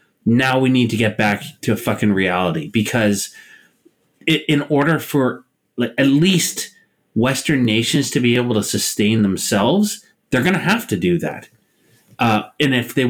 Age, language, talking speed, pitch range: 30-49, English, 155 wpm, 105-140 Hz